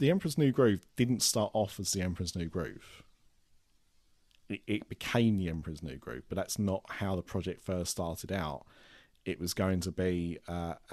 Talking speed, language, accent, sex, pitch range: 185 wpm, English, British, male, 95-110 Hz